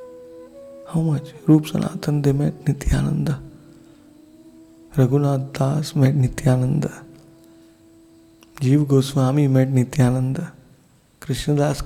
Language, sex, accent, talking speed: English, male, Indian, 75 wpm